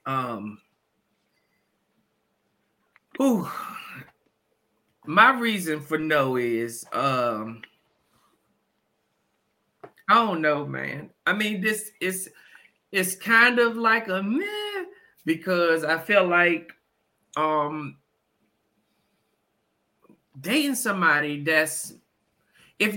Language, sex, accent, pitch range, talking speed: English, male, American, 150-210 Hz, 80 wpm